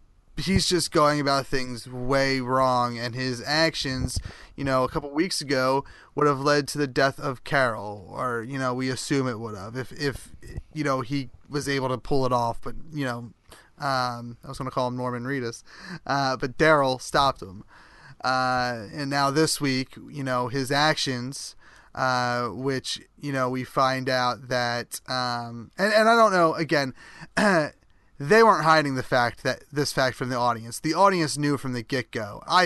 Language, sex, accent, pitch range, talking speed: English, male, American, 125-150 Hz, 185 wpm